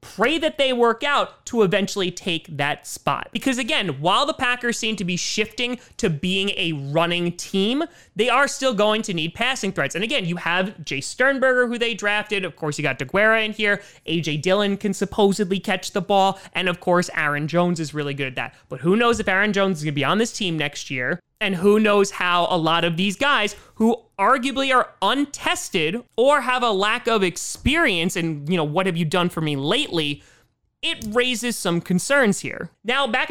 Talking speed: 205 wpm